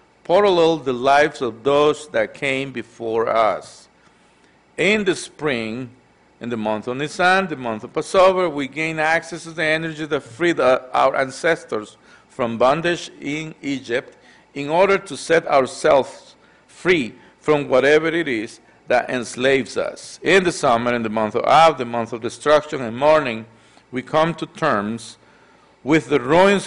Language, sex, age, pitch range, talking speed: English, male, 50-69, 120-160 Hz, 155 wpm